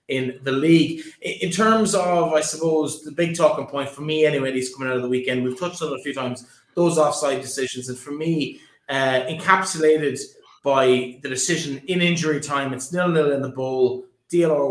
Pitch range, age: 135-180 Hz, 20-39